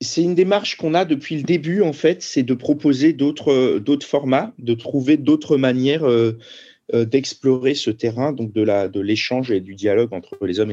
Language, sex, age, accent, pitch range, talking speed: French, male, 40-59, French, 115-145 Hz, 205 wpm